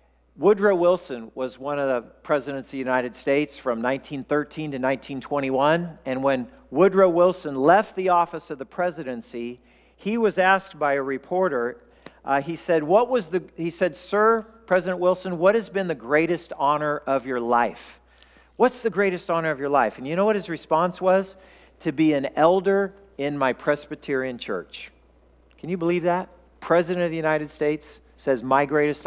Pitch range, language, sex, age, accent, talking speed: 135-180 Hz, English, male, 50-69, American, 175 wpm